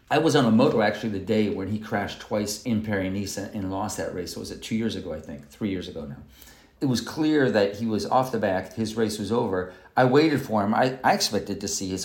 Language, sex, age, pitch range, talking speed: English, male, 40-59, 100-125 Hz, 265 wpm